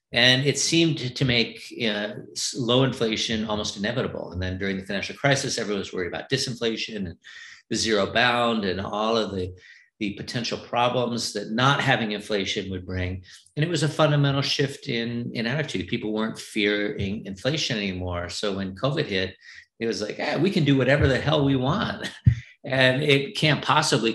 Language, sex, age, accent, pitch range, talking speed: English, male, 50-69, American, 105-130 Hz, 175 wpm